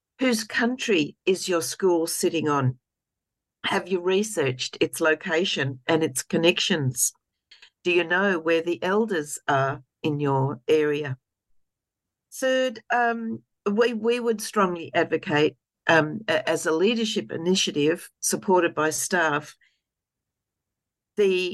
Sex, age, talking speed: female, 60-79, 115 wpm